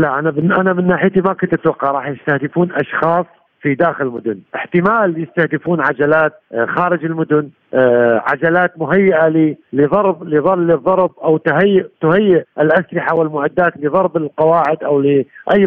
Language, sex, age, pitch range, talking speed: Arabic, male, 50-69, 145-195 Hz, 125 wpm